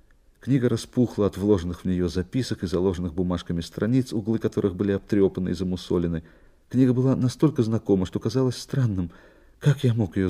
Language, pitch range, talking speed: Russian, 85-120 Hz, 165 wpm